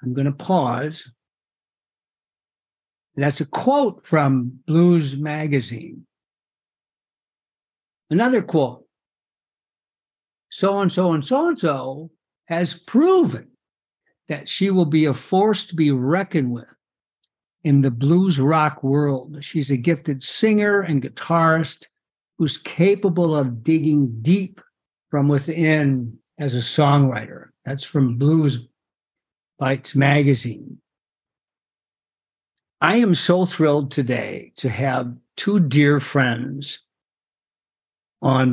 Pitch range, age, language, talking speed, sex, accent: 115-155 Hz, 60-79, English, 105 wpm, male, American